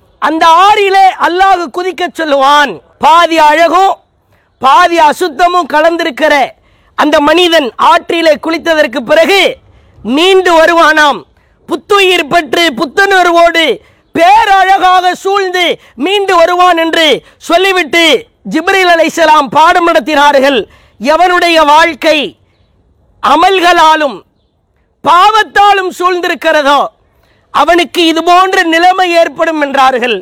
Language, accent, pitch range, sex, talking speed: English, Indian, 325-370 Hz, female, 80 wpm